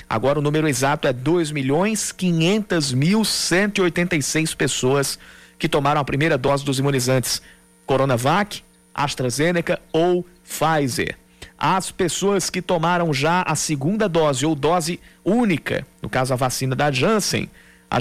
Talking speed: 120 wpm